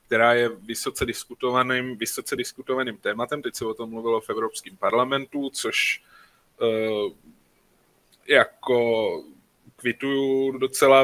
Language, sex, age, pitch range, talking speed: Slovak, male, 20-39, 115-135 Hz, 110 wpm